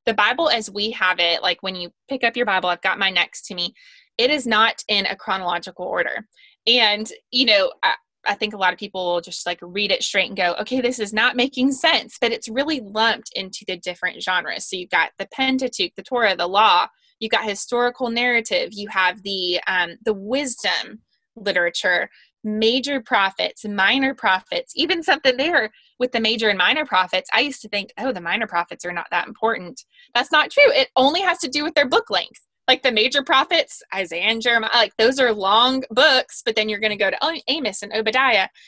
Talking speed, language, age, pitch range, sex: 215 wpm, English, 20-39, 205-270 Hz, female